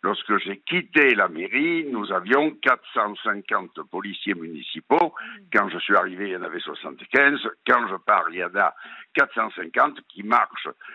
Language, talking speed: French, 160 wpm